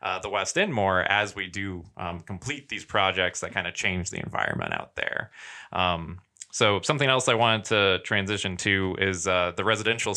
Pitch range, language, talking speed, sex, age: 95-110 Hz, English, 195 wpm, male, 20-39